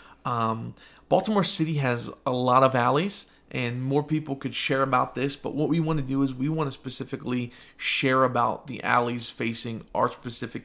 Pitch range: 120-135 Hz